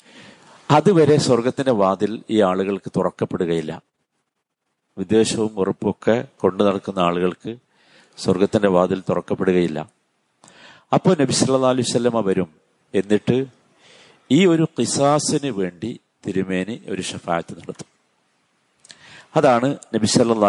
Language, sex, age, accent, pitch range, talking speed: Malayalam, male, 50-69, native, 95-135 Hz, 85 wpm